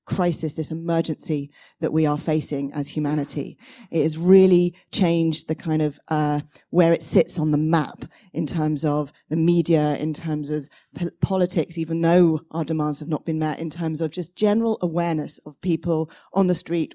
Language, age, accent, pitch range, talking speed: English, 40-59, British, 155-175 Hz, 180 wpm